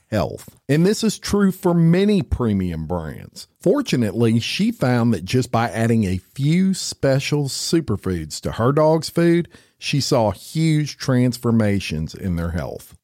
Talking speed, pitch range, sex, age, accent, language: 145 wpm, 95-140 Hz, male, 50-69, American, English